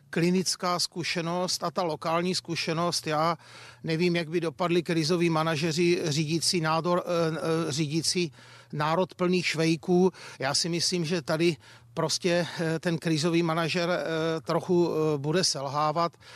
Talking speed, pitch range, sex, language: 115 wpm, 160-185 Hz, male, Czech